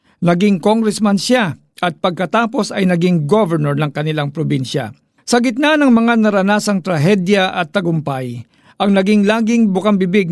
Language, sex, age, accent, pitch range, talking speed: Filipino, male, 50-69, native, 160-220 Hz, 135 wpm